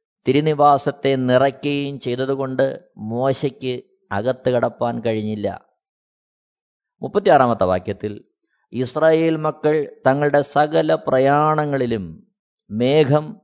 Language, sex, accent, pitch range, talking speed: Malayalam, male, native, 115-170 Hz, 65 wpm